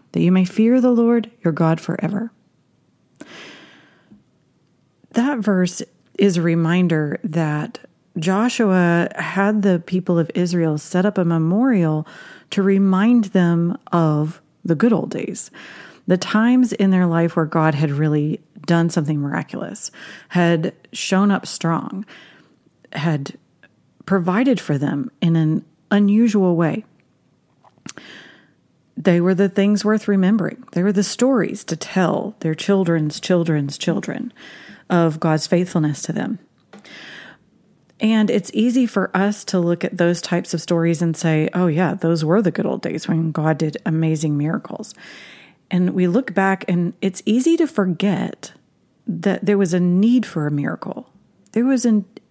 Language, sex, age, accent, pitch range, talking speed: English, female, 40-59, American, 165-210 Hz, 145 wpm